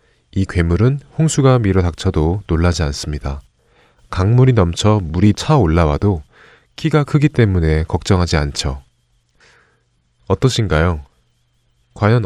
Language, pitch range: Korean, 80-120 Hz